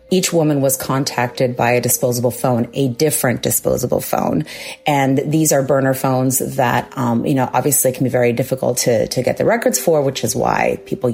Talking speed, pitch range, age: 195 wpm, 125-150 Hz, 30-49